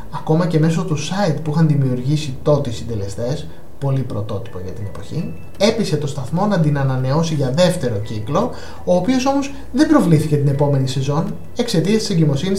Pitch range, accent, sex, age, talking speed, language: 135-170 Hz, native, male, 20-39, 170 wpm, Greek